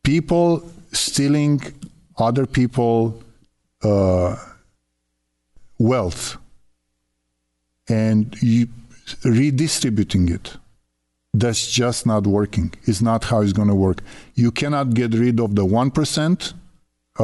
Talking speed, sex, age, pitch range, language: 95 wpm, male, 50-69, 105-125 Hz, English